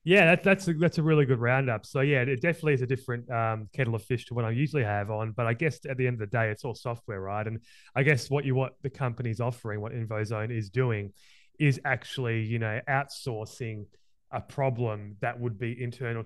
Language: English